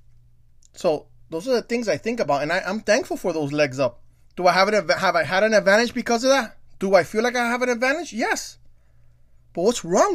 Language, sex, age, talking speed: English, male, 20-39, 235 wpm